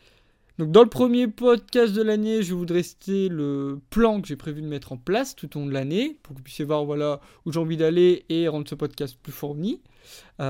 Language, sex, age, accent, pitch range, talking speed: French, male, 20-39, French, 150-210 Hz, 235 wpm